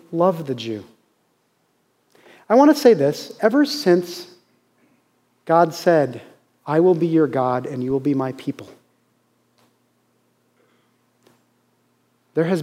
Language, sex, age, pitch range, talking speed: English, male, 30-49, 145-205 Hz, 120 wpm